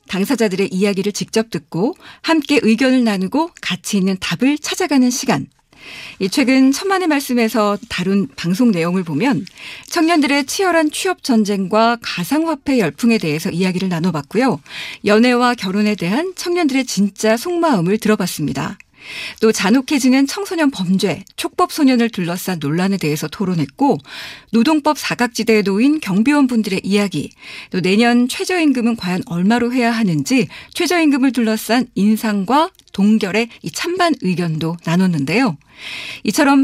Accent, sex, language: native, female, Korean